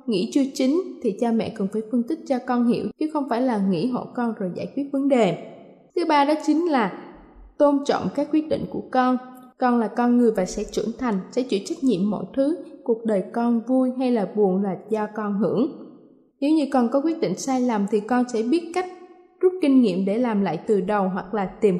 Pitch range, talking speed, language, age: 210-275 Hz, 235 wpm, Vietnamese, 20-39